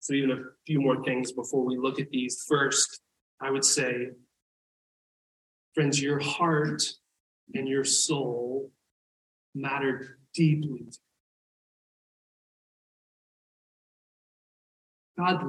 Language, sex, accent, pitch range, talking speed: English, male, American, 115-155 Hz, 95 wpm